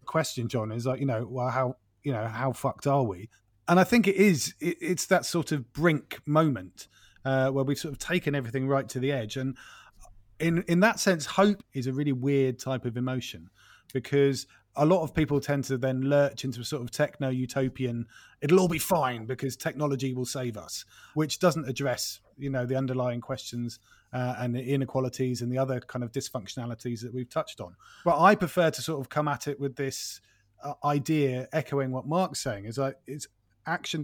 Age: 30-49